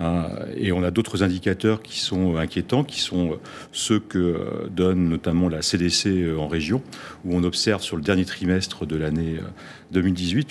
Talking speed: 160 wpm